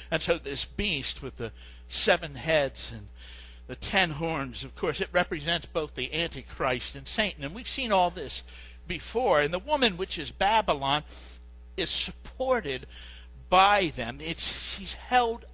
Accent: American